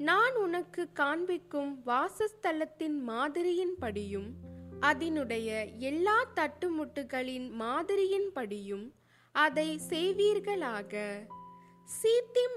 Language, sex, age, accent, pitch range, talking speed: Tamil, female, 20-39, native, 235-355 Hz, 55 wpm